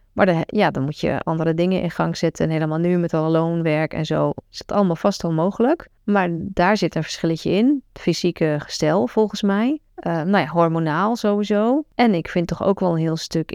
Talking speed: 215 wpm